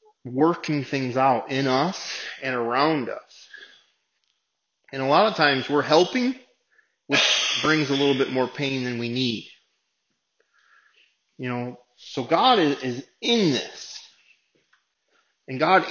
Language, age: English, 30-49